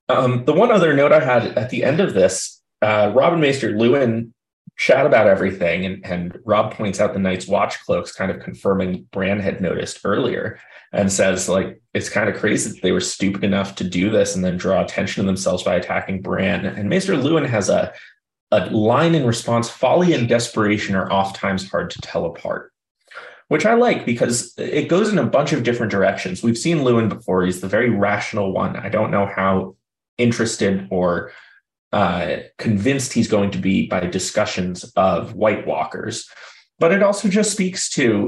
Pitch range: 95-125 Hz